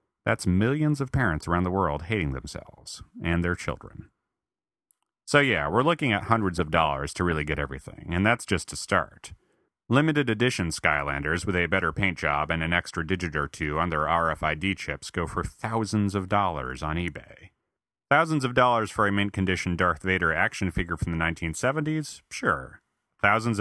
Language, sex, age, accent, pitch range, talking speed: English, male, 30-49, American, 80-110 Hz, 180 wpm